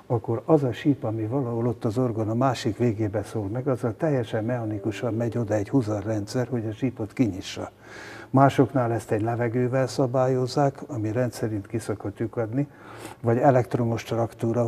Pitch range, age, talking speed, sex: 110-130 Hz, 60-79, 155 wpm, male